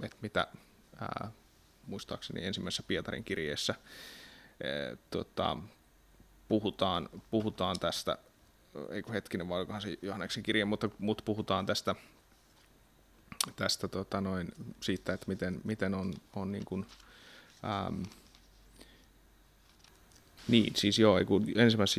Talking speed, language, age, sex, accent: 105 wpm, Finnish, 30-49, male, native